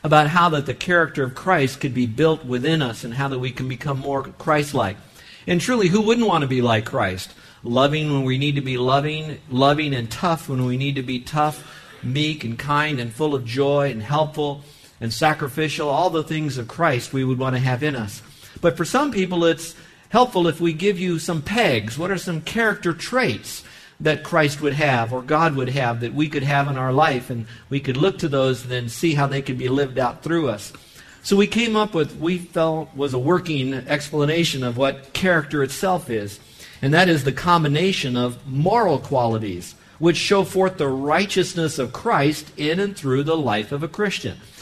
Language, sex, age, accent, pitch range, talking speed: English, male, 50-69, American, 130-170 Hz, 210 wpm